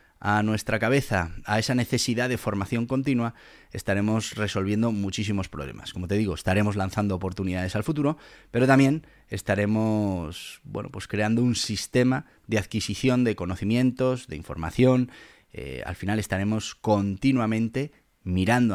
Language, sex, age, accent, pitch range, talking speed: Spanish, male, 30-49, Spanish, 95-125 Hz, 130 wpm